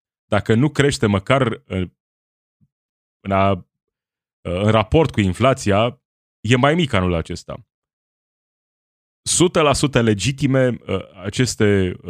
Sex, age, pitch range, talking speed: male, 30-49, 95-130 Hz, 95 wpm